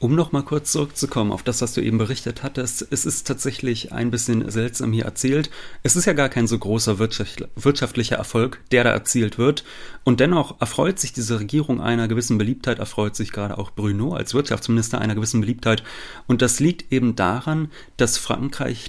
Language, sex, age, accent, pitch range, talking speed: German, male, 30-49, German, 105-125 Hz, 185 wpm